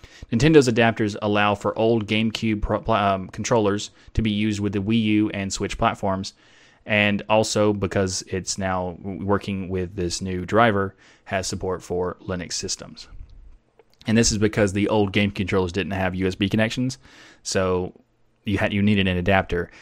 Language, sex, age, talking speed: English, male, 20-39, 160 wpm